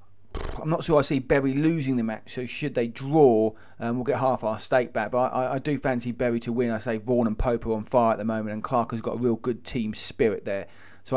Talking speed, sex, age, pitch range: 270 wpm, male, 30-49, 110-135 Hz